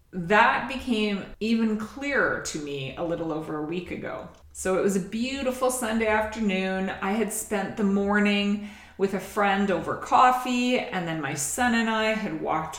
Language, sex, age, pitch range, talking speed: English, female, 30-49, 165-215 Hz, 175 wpm